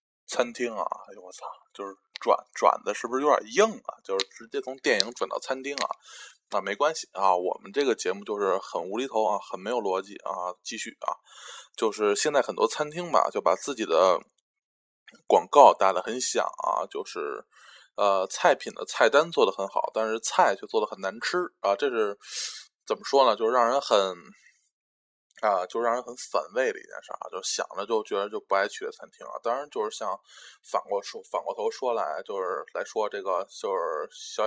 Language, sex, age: Chinese, male, 20-39